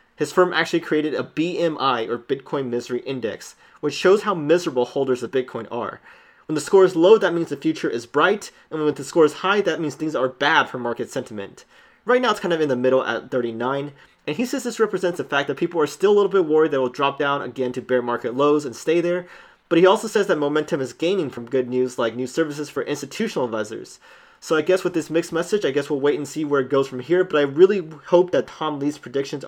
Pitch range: 130-170 Hz